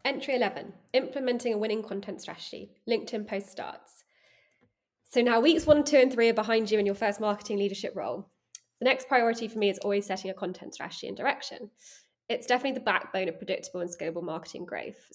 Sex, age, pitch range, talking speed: female, 20-39, 190-225 Hz, 195 wpm